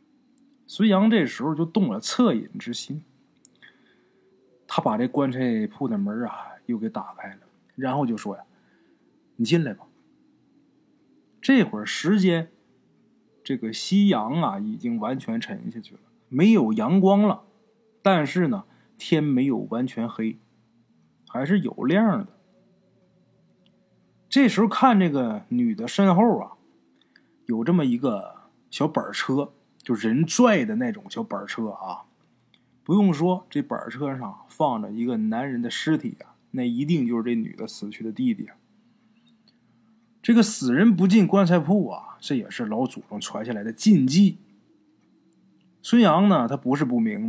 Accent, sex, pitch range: native, male, 150-235 Hz